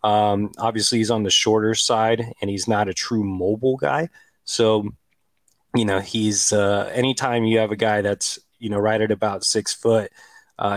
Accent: American